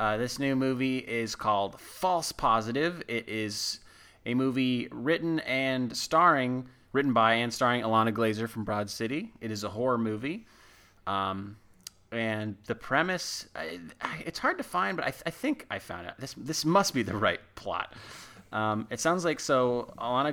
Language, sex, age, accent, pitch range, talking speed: English, male, 20-39, American, 110-135 Hz, 170 wpm